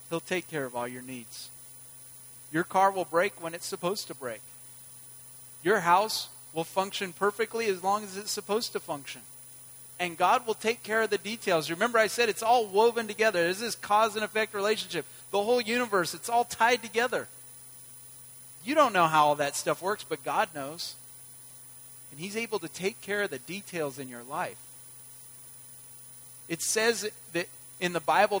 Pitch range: 150-210 Hz